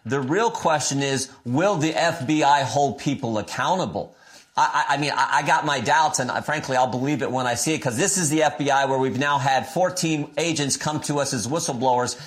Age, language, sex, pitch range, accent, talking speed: 40-59, English, male, 140-170 Hz, American, 210 wpm